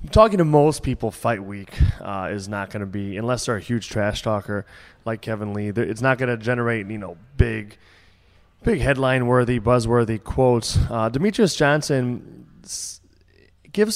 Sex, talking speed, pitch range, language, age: male, 165 wpm, 105-125 Hz, English, 20-39